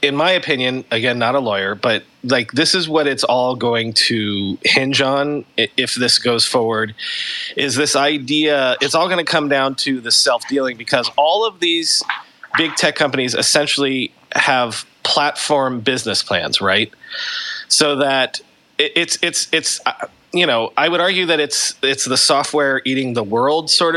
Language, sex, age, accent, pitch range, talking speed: English, male, 30-49, American, 130-185 Hz, 165 wpm